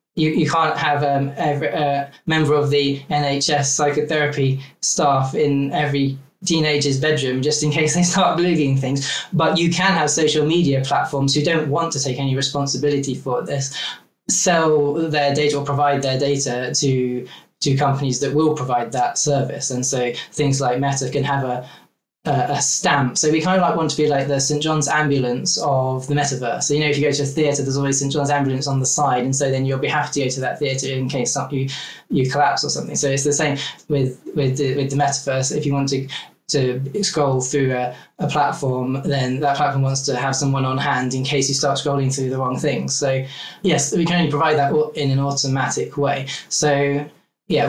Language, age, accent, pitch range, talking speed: English, 20-39, British, 135-150 Hz, 215 wpm